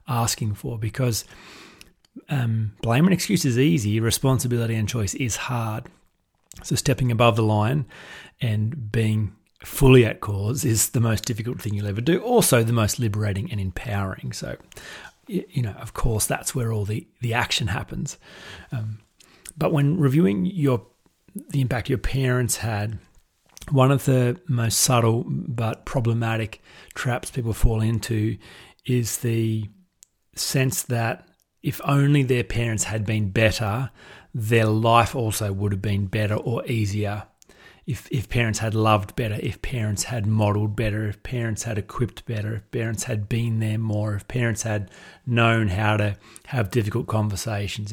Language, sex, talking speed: English, male, 155 wpm